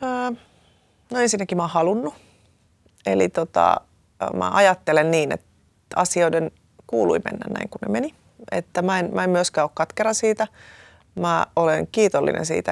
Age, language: 30-49, Finnish